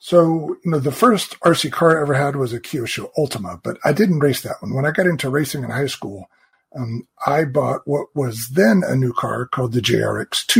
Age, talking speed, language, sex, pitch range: 40-59, 225 wpm, English, male, 130-160 Hz